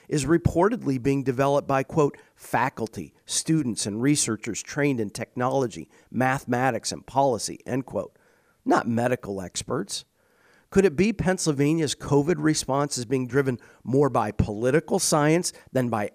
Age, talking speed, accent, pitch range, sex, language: 50-69, 135 wpm, American, 125-170 Hz, male, English